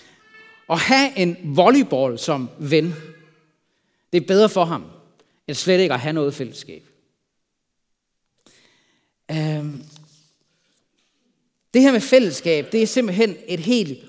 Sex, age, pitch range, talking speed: male, 40-59, 150-220 Hz, 115 wpm